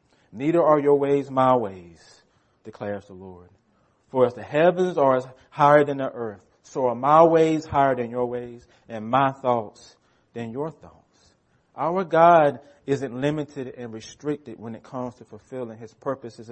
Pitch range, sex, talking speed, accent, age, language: 120-170 Hz, male, 165 wpm, American, 30-49, English